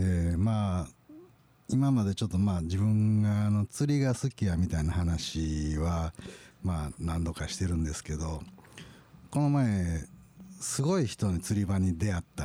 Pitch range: 85-130 Hz